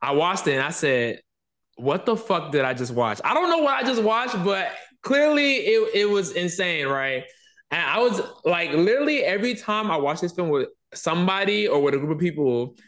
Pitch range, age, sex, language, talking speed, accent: 145-215 Hz, 20-39, male, English, 215 wpm, American